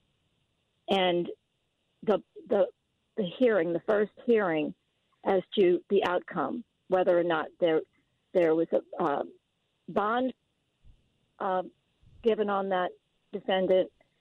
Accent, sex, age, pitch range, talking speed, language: American, female, 50-69, 170-220 Hz, 110 wpm, English